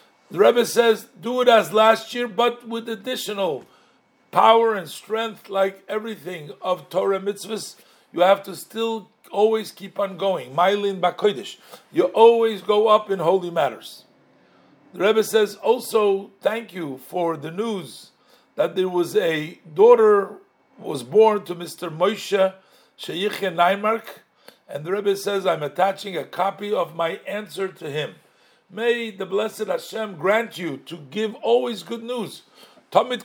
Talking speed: 145 wpm